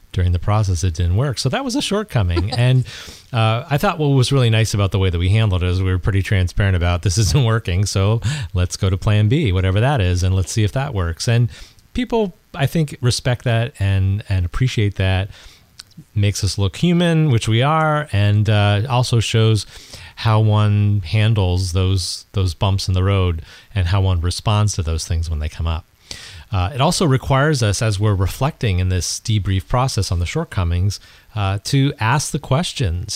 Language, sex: English, male